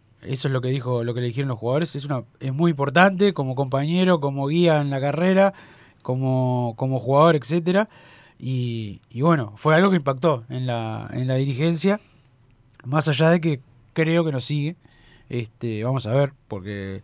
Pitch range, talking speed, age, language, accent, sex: 125-160 Hz, 185 wpm, 20-39, Spanish, Argentinian, male